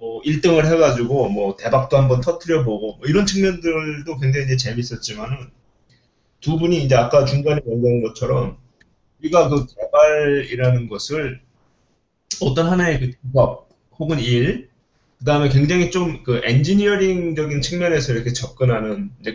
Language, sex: Korean, male